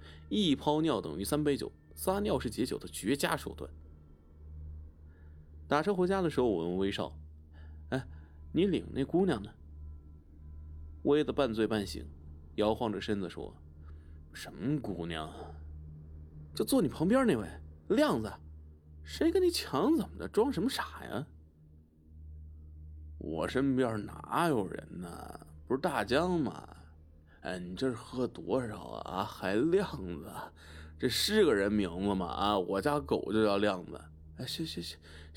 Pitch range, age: 75-115 Hz, 30-49